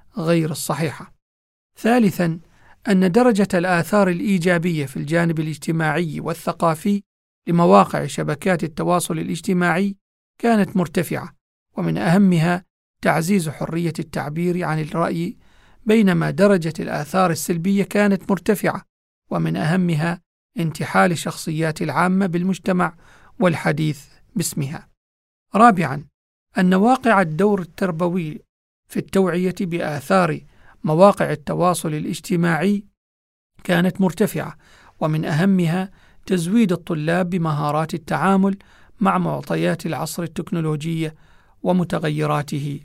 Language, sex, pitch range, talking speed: Arabic, male, 160-190 Hz, 85 wpm